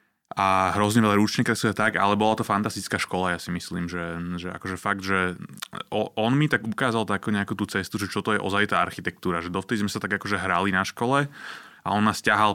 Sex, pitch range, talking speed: male, 100-130 Hz, 220 wpm